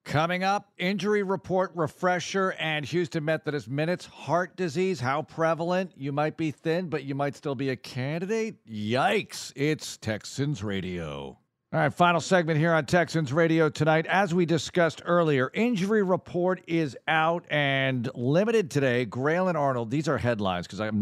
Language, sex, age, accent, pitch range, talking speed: English, male, 50-69, American, 115-155 Hz, 160 wpm